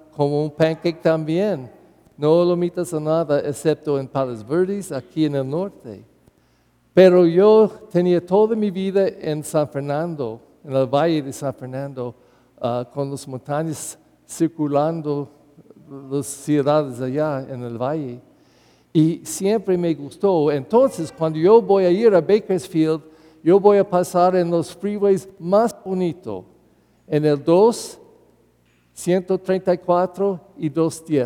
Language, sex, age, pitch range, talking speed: English, male, 50-69, 145-185 Hz, 130 wpm